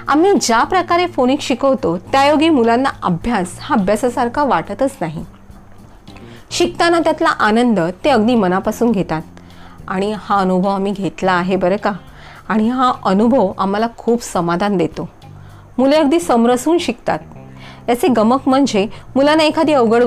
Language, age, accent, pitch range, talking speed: Marathi, 30-49, native, 185-270 Hz, 130 wpm